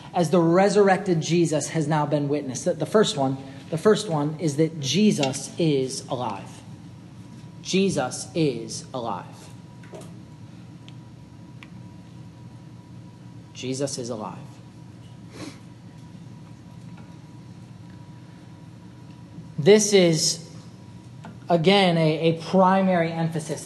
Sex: male